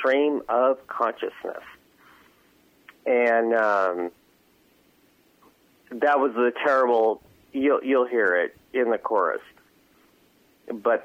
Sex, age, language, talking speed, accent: male, 40-59, English, 85 wpm, American